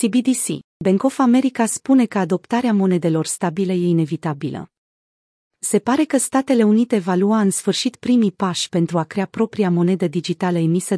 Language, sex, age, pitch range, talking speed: Romanian, female, 30-49, 175-220 Hz, 160 wpm